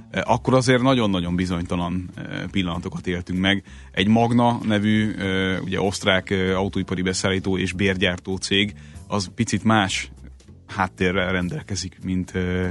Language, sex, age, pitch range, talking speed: Hungarian, male, 30-49, 90-105 Hz, 110 wpm